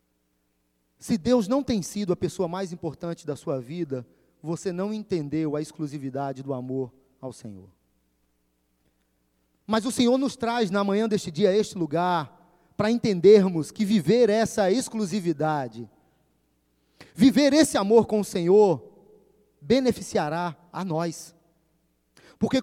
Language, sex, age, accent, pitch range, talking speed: Portuguese, male, 30-49, Brazilian, 140-220 Hz, 130 wpm